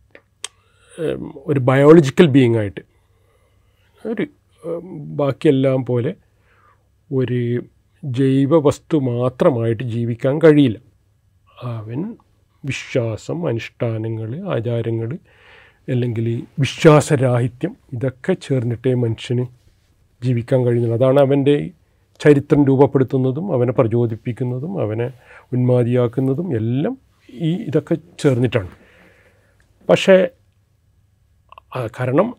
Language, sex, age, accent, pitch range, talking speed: Malayalam, male, 40-59, native, 115-140 Hz, 70 wpm